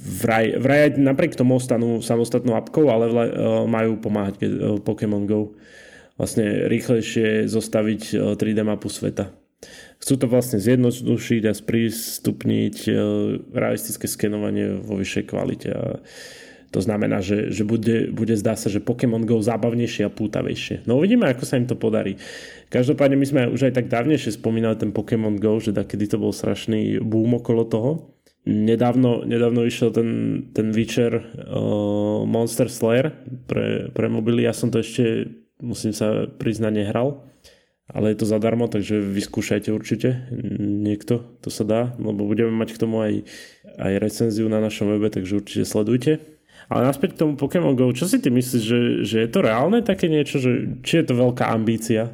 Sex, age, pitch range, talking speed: male, 20-39, 110-125 Hz, 160 wpm